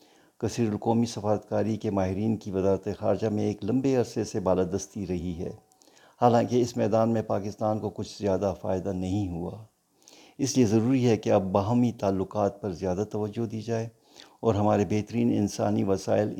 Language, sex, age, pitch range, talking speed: Urdu, male, 50-69, 95-110 Hz, 165 wpm